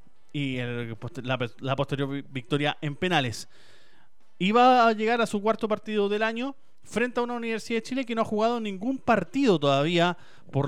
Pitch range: 130-190 Hz